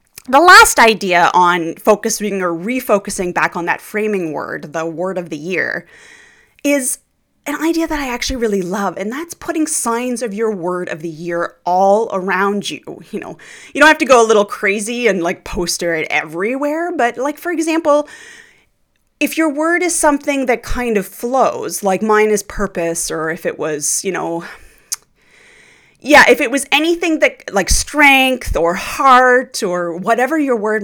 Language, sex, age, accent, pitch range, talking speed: English, female, 30-49, American, 185-275 Hz, 175 wpm